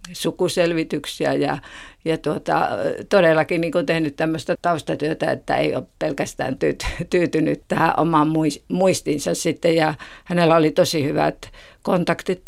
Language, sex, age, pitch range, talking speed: Finnish, female, 50-69, 145-165 Hz, 120 wpm